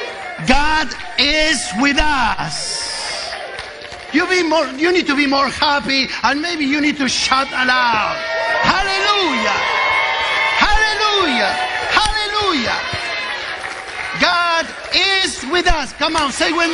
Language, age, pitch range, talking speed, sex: English, 50-69, 255-340 Hz, 105 wpm, male